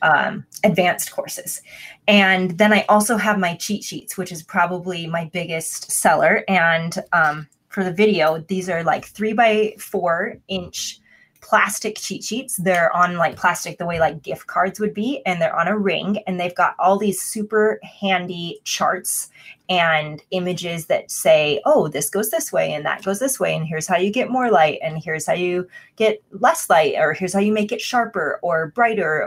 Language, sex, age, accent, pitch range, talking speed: English, female, 20-39, American, 170-210 Hz, 190 wpm